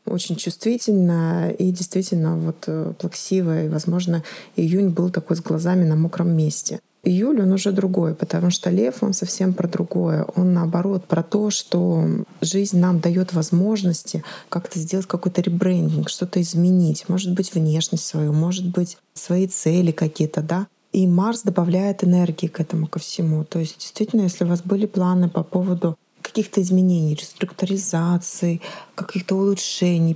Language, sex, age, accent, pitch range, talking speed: Russian, female, 20-39, native, 170-190 Hz, 145 wpm